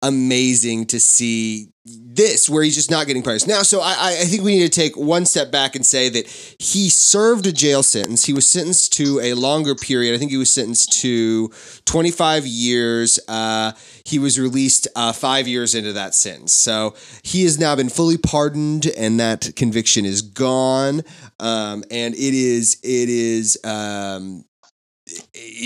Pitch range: 120-170 Hz